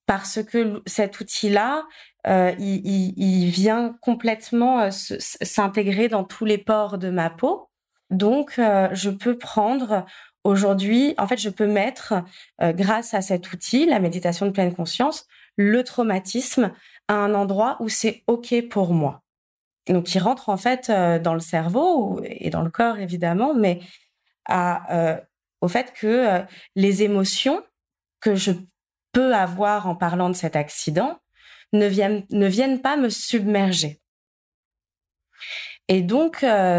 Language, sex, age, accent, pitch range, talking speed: French, female, 20-39, French, 180-215 Hz, 155 wpm